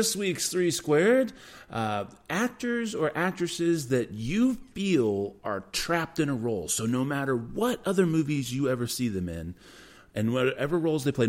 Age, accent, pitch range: 30-49, American, 100-150 Hz